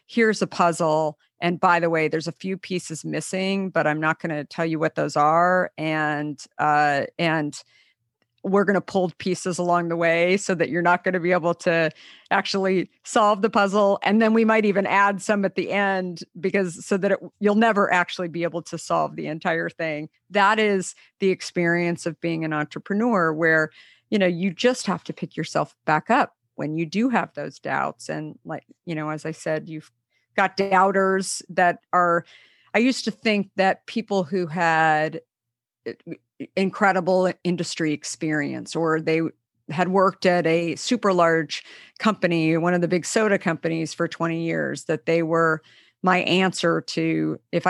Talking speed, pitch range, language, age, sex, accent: 180 wpm, 160-190 Hz, English, 50-69, female, American